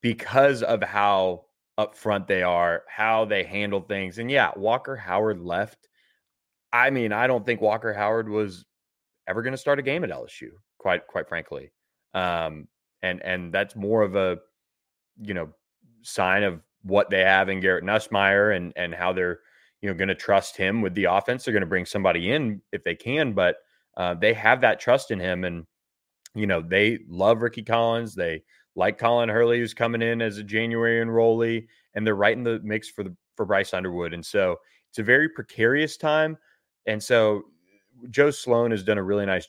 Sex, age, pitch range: male, 20-39, 90-115 Hz